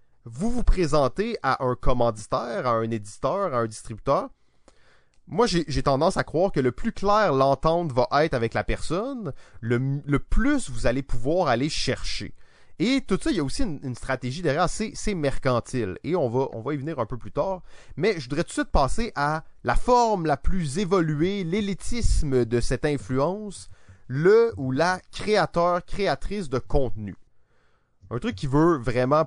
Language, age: French, 30-49